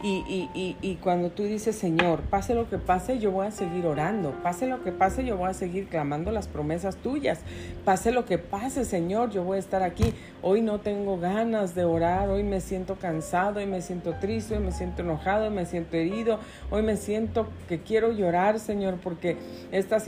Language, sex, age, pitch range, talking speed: Spanish, female, 40-59, 170-210 Hz, 205 wpm